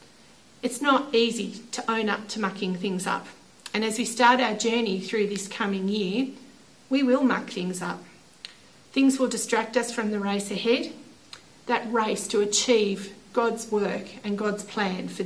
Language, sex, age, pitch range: English, female, 40-59, 200-235 Hz